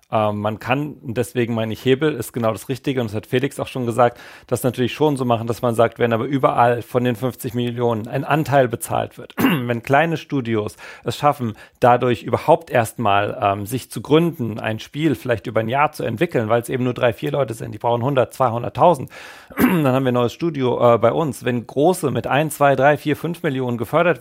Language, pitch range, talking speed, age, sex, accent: German, 120-145 Hz, 215 wpm, 40-59, male, German